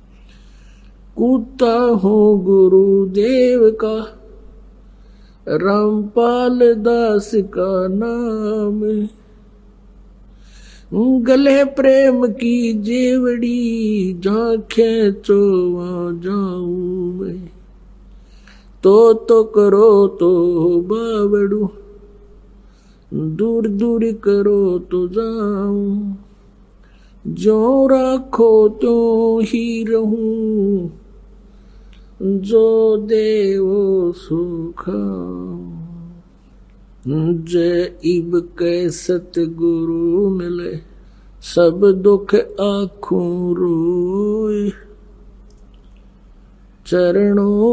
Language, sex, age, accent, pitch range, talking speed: Kannada, male, 50-69, native, 180-220 Hz, 35 wpm